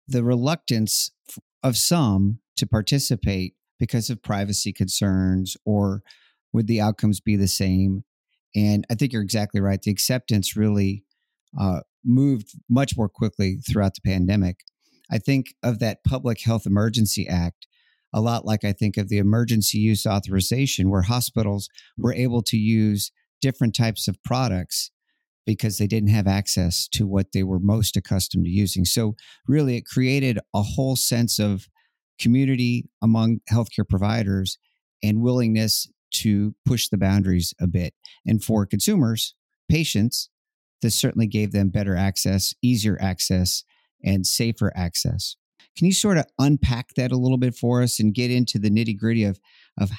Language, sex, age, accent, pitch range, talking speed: English, male, 50-69, American, 100-120 Hz, 155 wpm